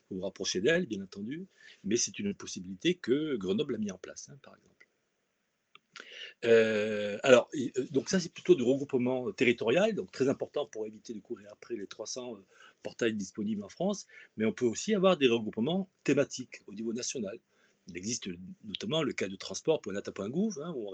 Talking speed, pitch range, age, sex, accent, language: 180 wpm, 115-195 Hz, 40-59, male, French, French